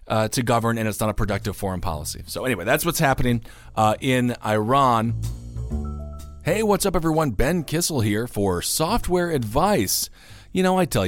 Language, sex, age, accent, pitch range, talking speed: English, male, 40-59, American, 110-160 Hz, 175 wpm